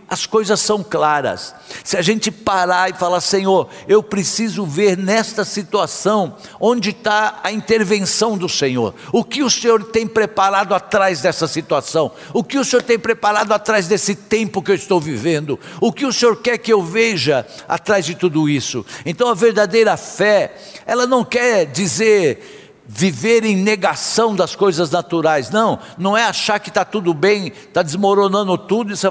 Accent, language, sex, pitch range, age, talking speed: Brazilian, Portuguese, male, 180-225 Hz, 60-79, 170 wpm